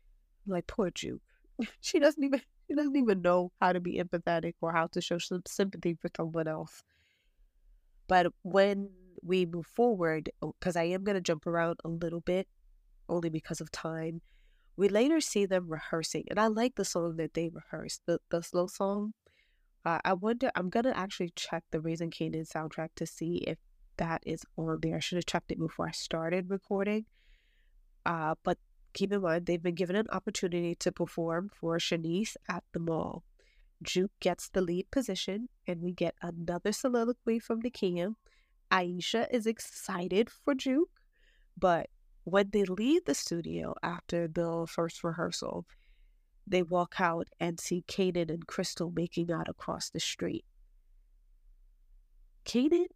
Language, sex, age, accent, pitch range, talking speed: English, female, 20-39, American, 170-205 Hz, 165 wpm